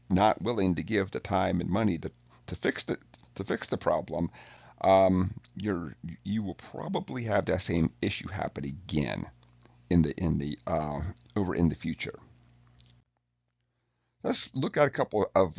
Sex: male